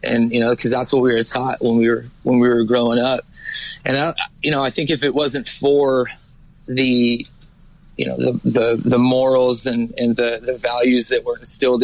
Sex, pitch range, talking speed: male, 120-140 Hz, 215 wpm